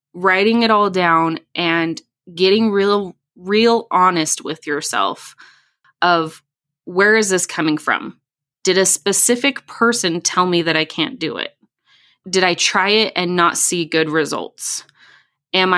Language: English